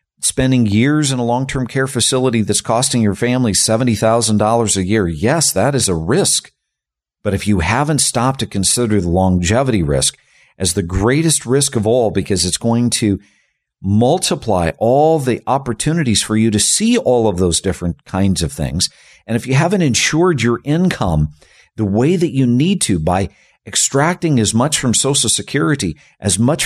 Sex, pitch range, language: male, 90-125 Hz, English